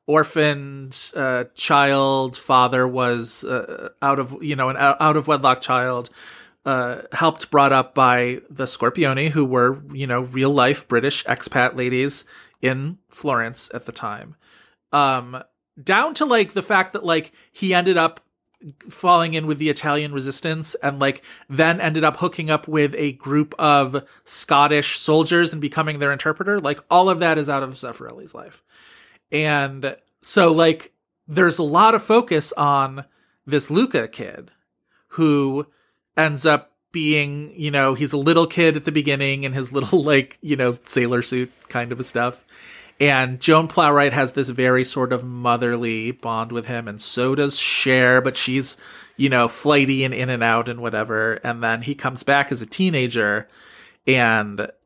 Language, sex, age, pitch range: English, male, 30-49, 130-155 Hz